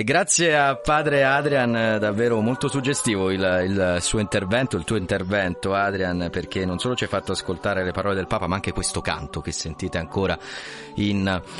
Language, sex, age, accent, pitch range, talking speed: Italian, male, 30-49, native, 95-115 Hz, 175 wpm